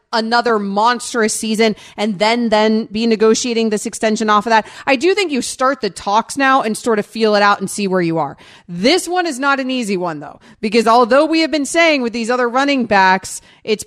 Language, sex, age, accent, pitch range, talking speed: English, female, 30-49, American, 200-250 Hz, 225 wpm